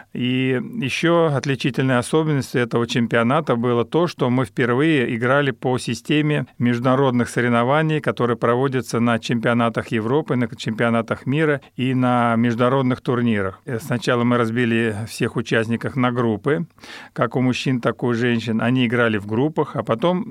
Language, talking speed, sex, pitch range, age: Russian, 140 wpm, male, 120-145 Hz, 40-59